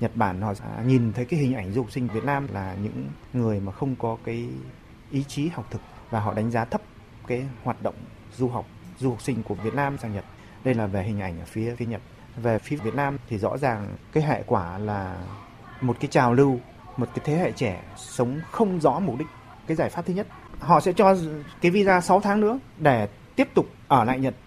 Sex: male